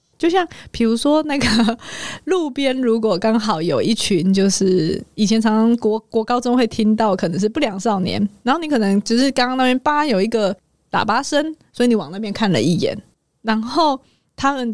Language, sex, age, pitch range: Chinese, female, 20-39, 205-280 Hz